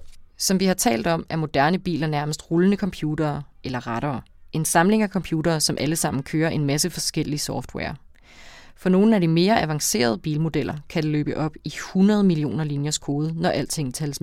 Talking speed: 185 wpm